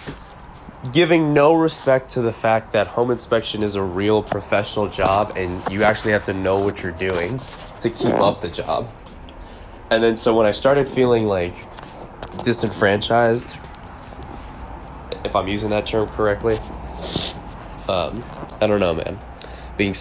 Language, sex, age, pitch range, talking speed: English, male, 20-39, 90-115 Hz, 145 wpm